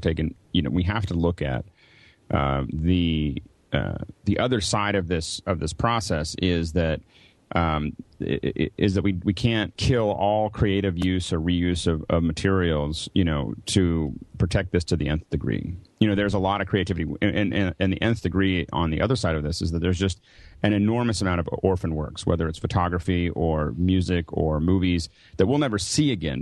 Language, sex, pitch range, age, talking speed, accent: English, male, 85-105 Hz, 30-49, 195 wpm, American